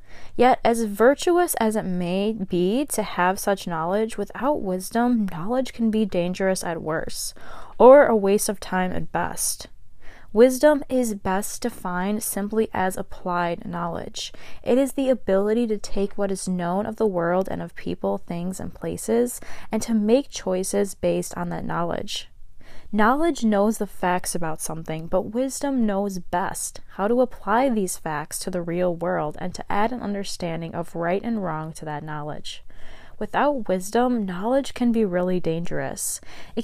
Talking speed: 160 wpm